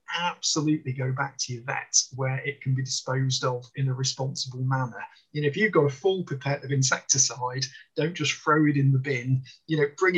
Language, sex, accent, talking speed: English, male, British, 210 wpm